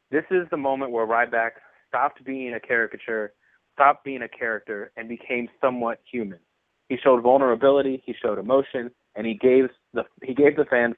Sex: male